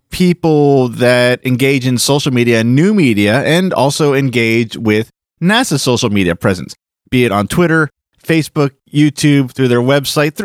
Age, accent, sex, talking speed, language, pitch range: 30-49, American, male, 145 wpm, English, 110-140 Hz